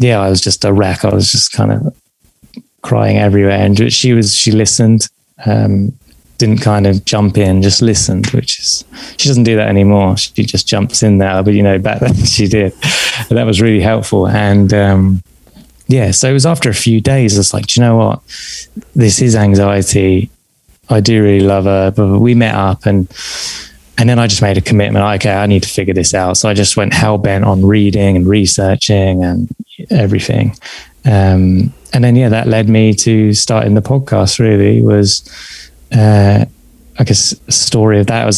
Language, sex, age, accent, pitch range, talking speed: English, male, 20-39, British, 100-115 Hz, 195 wpm